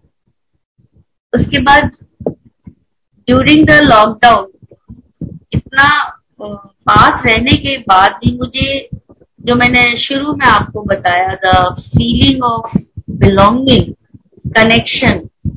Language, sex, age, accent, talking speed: Hindi, female, 50-69, native, 85 wpm